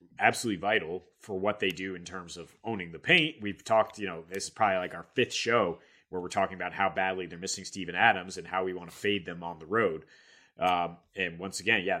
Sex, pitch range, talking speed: male, 95-125 Hz, 240 wpm